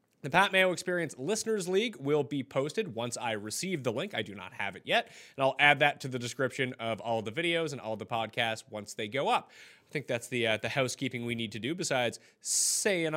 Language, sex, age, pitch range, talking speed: English, male, 30-49, 125-195 Hz, 235 wpm